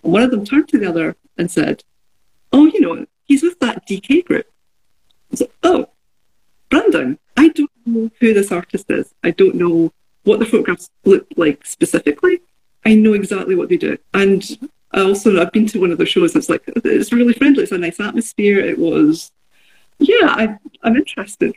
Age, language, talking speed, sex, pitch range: 40-59, English, 185 wpm, female, 175-275 Hz